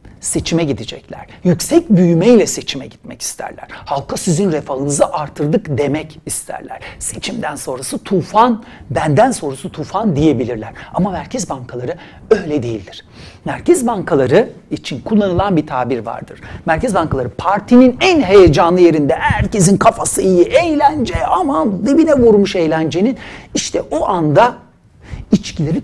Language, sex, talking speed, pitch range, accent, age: Turkish, male, 115 wpm, 130-210 Hz, native, 60-79